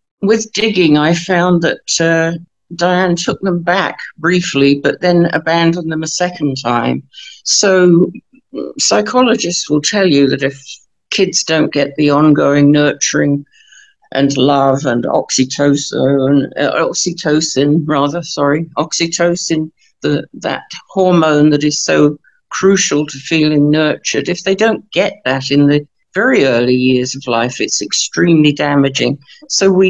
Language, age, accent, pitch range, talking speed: English, 60-79, British, 145-180 Hz, 125 wpm